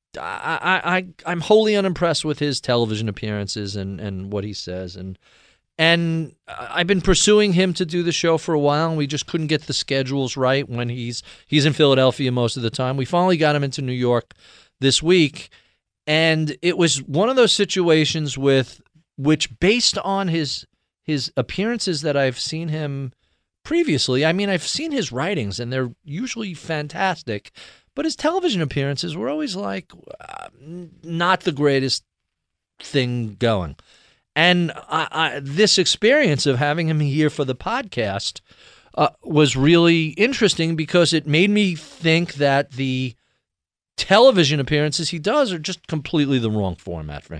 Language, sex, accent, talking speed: English, male, American, 160 wpm